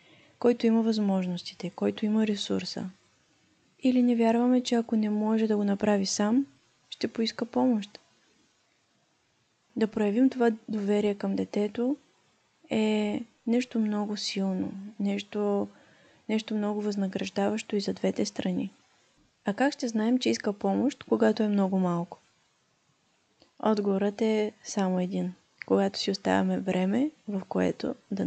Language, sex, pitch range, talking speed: Bulgarian, female, 185-220 Hz, 125 wpm